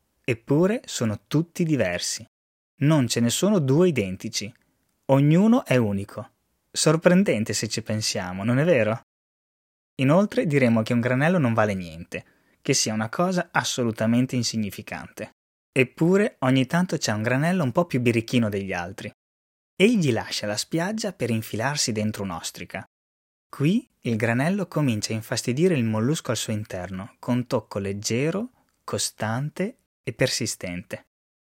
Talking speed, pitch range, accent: 135 wpm, 105-145 Hz, native